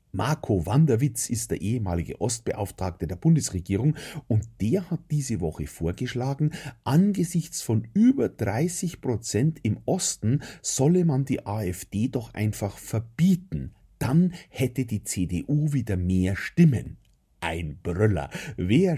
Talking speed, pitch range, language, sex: 115 wpm, 90-140 Hz, German, male